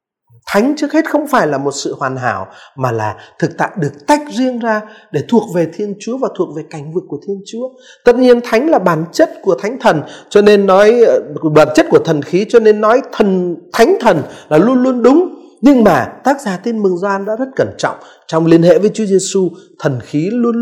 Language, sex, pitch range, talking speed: Vietnamese, male, 160-245 Hz, 225 wpm